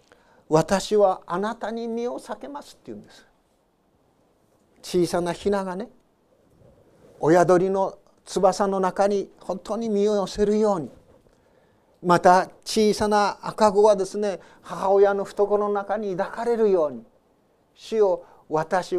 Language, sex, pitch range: Japanese, male, 175-205 Hz